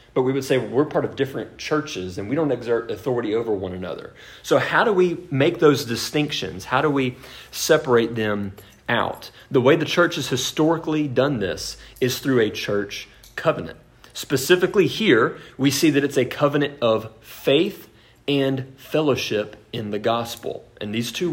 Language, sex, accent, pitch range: English, male, American, 115-145 Hz